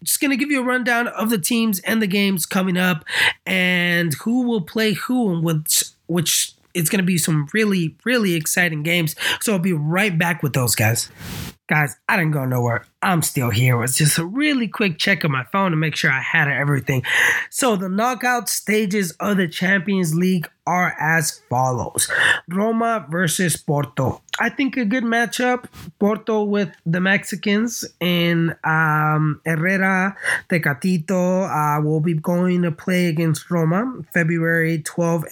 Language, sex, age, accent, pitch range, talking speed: English, male, 20-39, American, 155-195 Hz, 170 wpm